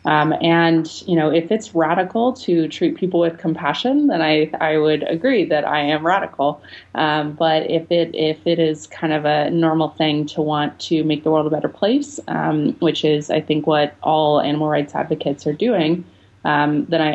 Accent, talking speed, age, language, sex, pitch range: American, 195 wpm, 30-49, English, female, 155-175 Hz